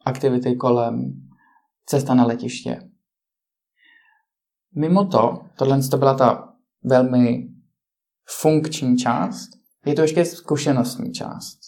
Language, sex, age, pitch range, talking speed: Czech, male, 20-39, 125-170 Hz, 90 wpm